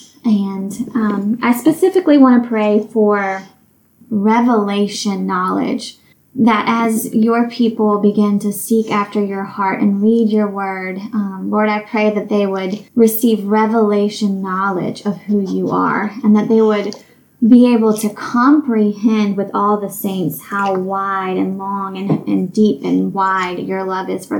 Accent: American